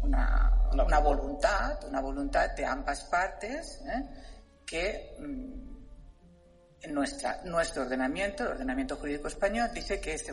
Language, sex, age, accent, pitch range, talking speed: Spanish, female, 50-69, Spanish, 140-200 Hz, 120 wpm